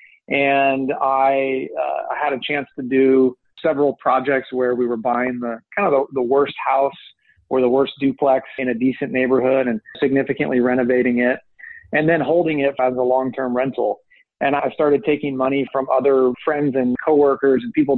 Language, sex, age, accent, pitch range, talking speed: English, male, 30-49, American, 125-145 Hz, 175 wpm